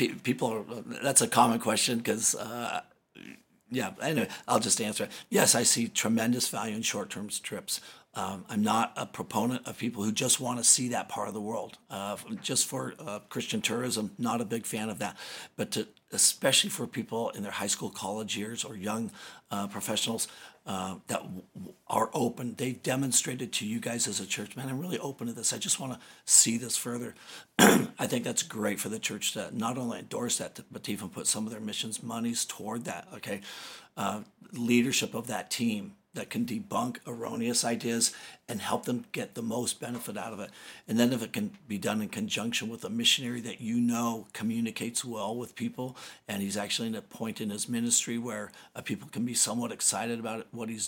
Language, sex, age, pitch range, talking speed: English, male, 50-69, 110-125 Hz, 200 wpm